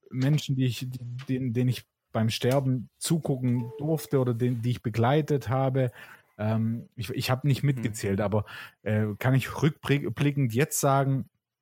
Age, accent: 30-49, German